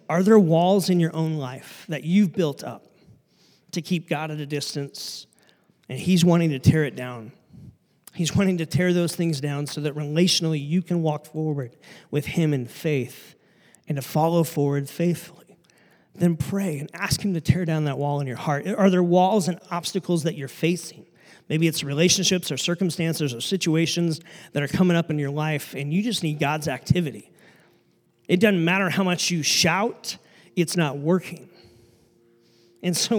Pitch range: 145-175 Hz